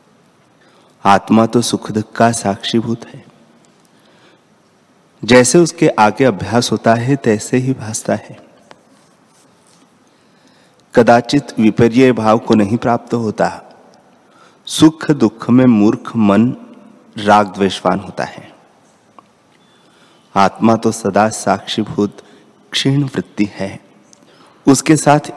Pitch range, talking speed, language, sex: 105-120 Hz, 90 wpm, Hindi, male